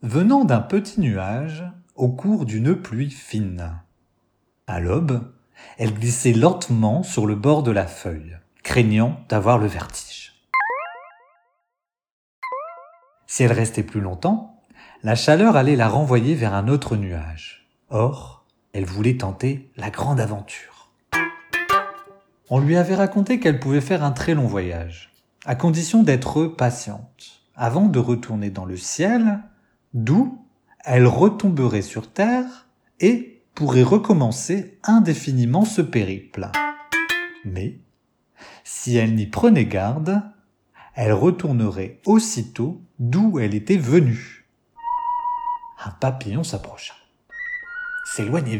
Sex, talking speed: male, 115 wpm